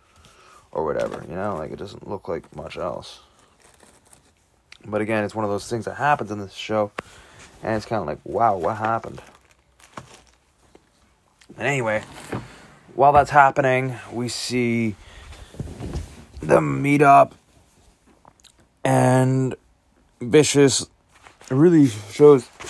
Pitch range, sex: 100-125 Hz, male